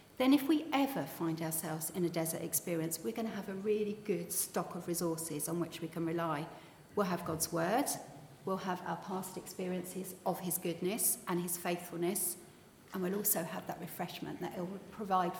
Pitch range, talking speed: 165-220 Hz, 190 wpm